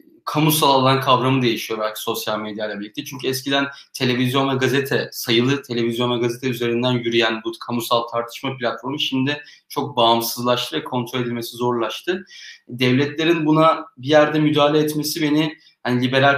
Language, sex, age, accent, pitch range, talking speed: Turkish, male, 30-49, native, 120-155 Hz, 145 wpm